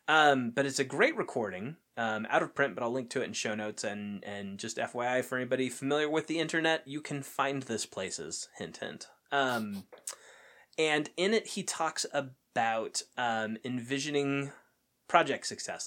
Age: 20-39